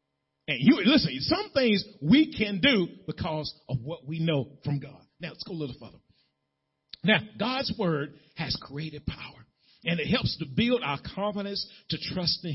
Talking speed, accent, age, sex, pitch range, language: 175 wpm, American, 40-59, male, 120-180 Hz, English